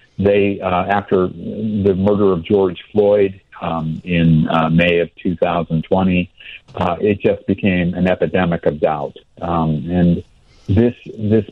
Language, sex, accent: English, male, American